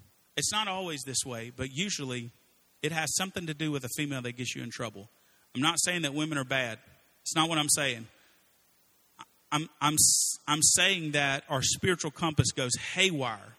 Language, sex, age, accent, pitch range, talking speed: English, male, 40-59, American, 130-165 Hz, 185 wpm